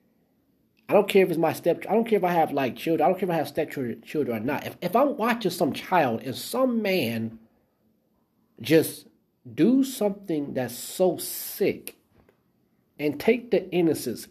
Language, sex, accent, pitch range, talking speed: English, male, American, 125-190 Hz, 180 wpm